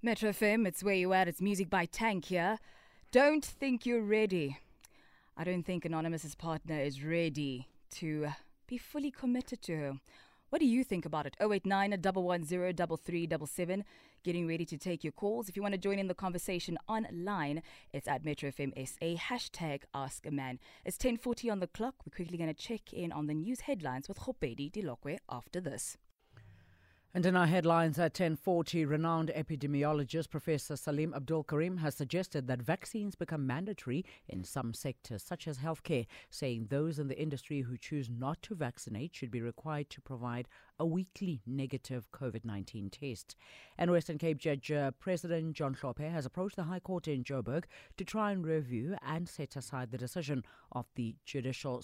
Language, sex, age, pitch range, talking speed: English, female, 20-39, 135-180 Hz, 170 wpm